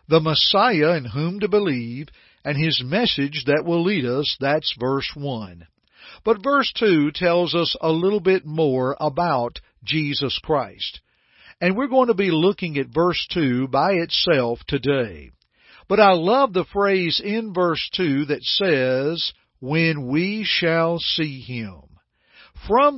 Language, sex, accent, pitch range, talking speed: English, male, American, 135-195 Hz, 145 wpm